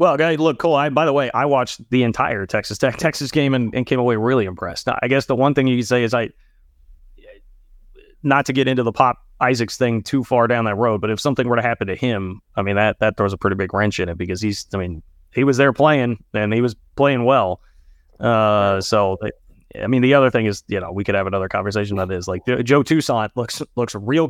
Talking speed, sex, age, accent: 245 wpm, male, 30-49, American